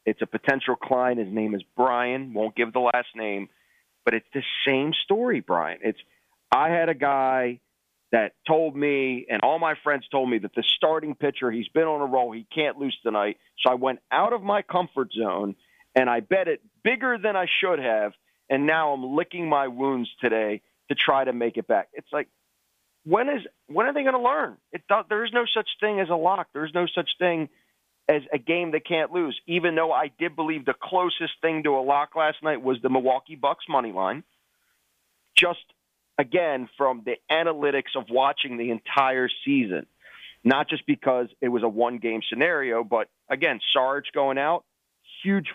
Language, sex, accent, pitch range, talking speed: English, male, American, 125-160 Hz, 195 wpm